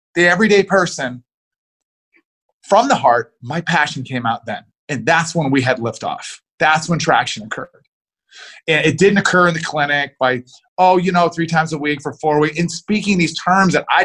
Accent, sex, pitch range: American, male, 135-185 Hz